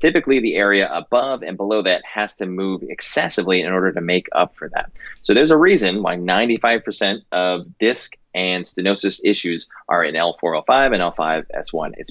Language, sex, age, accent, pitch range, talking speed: English, male, 30-49, American, 90-105 Hz, 175 wpm